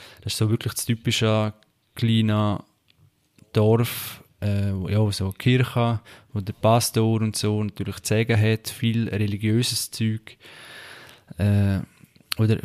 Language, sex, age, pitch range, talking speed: German, male, 20-39, 100-115 Hz, 130 wpm